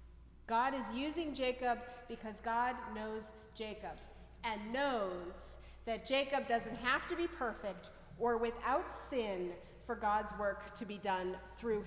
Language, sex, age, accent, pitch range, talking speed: English, female, 40-59, American, 205-260 Hz, 135 wpm